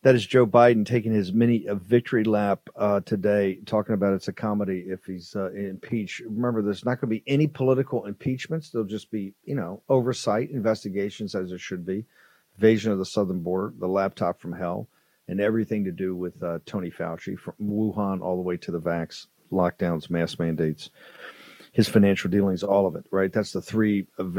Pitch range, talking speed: 95-120 Hz, 195 wpm